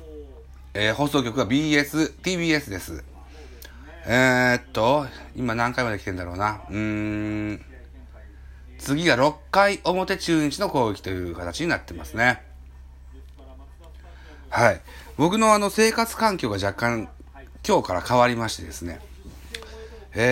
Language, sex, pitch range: Japanese, male, 75-125 Hz